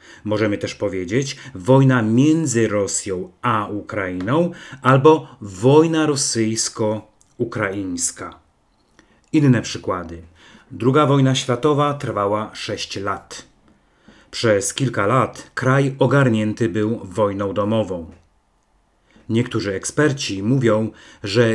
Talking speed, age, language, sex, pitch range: 85 wpm, 40-59, Polish, male, 105-135 Hz